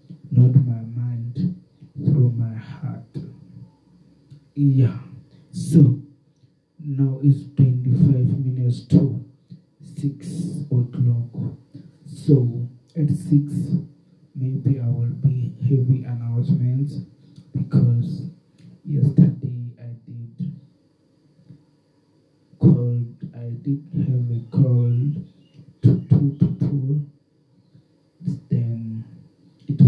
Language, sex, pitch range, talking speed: English, male, 125-150 Hz, 80 wpm